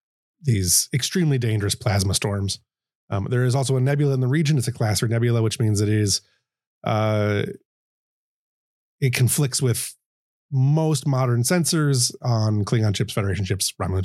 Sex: male